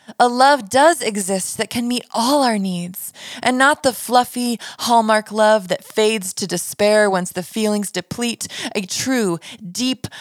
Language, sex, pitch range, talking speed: English, female, 205-265 Hz, 160 wpm